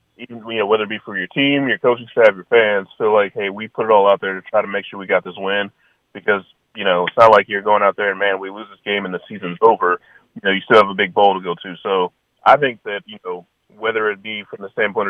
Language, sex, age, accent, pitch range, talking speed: English, male, 20-39, American, 100-115 Hz, 300 wpm